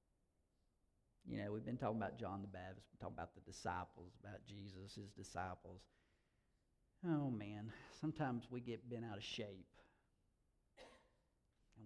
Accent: American